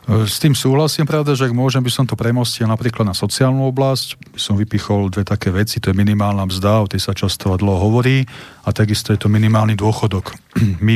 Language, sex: Slovak, male